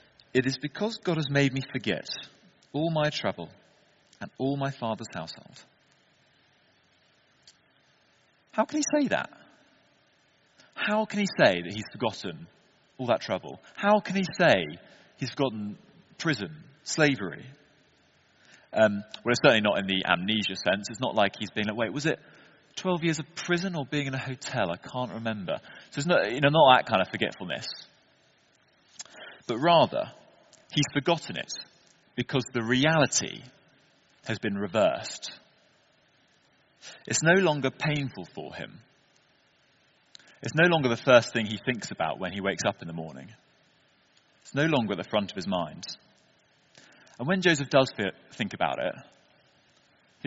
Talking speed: 150 wpm